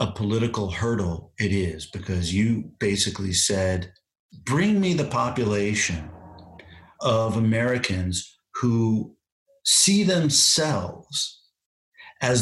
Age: 50-69